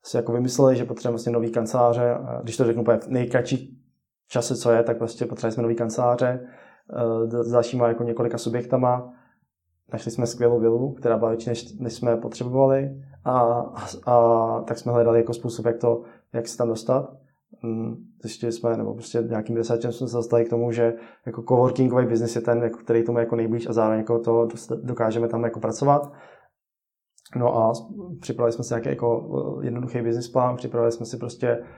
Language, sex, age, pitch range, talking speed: Czech, male, 20-39, 115-125 Hz, 180 wpm